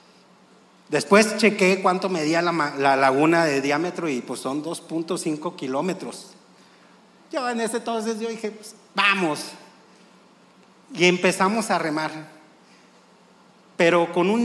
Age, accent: 40-59, Mexican